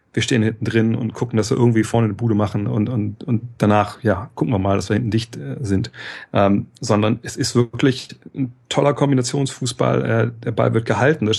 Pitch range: 110-125 Hz